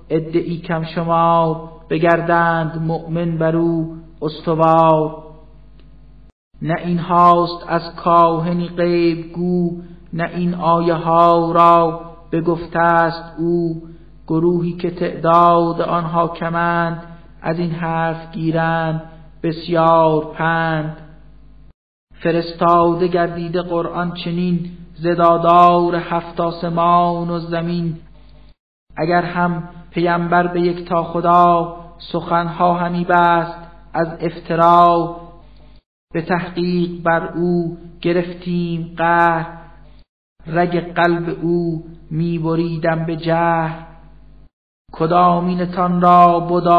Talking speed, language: 90 wpm, Persian